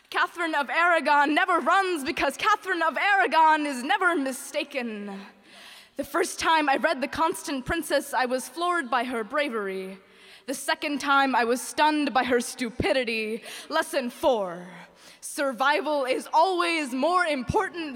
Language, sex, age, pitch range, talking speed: English, female, 20-39, 245-330 Hz, 140 wpm